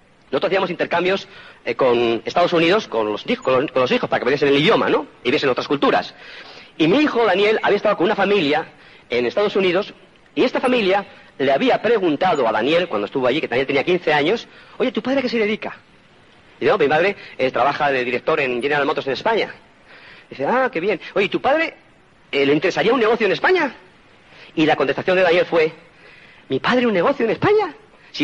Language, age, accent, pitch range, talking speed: Spanish, 40-59, Spanish, 155-255 Hz, 205 wpm